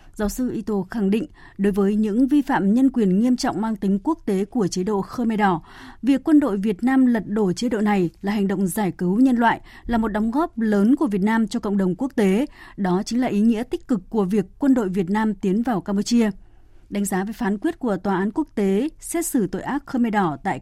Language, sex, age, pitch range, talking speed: Vietnamese, female, 20-39, 190-245 Hz, 250 wpm